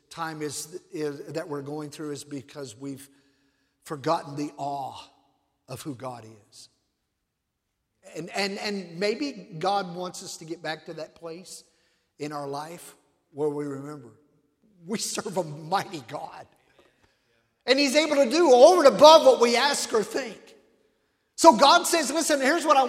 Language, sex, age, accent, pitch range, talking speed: English, male, 50-69, American, 155-200 Hz, 160 wpm